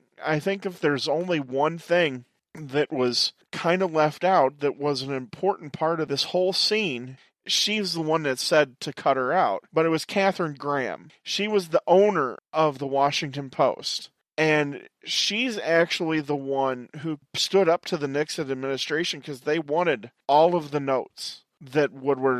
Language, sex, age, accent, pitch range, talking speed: English, male, 40-59, American, 130-160 Hz, 175 wpm